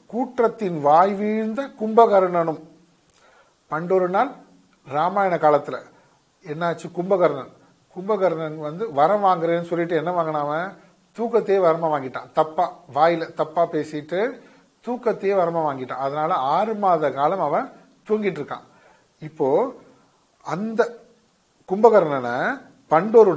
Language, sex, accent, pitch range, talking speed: Tamil, male, native, 155-215 Hz, 100 wpm